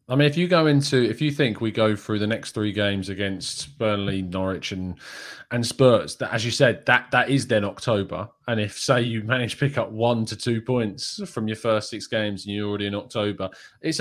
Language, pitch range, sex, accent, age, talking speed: English, 105-130 Hz, male, British, 20-39, 230 wpm